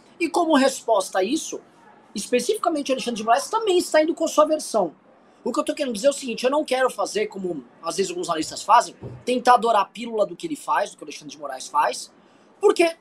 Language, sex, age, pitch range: Portuguese, male, 20-39, 210-300 Hz